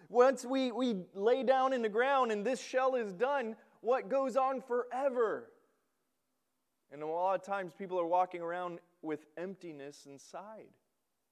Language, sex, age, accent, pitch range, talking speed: English, male, 30-49, American, 185-255 Hz, 155 wpm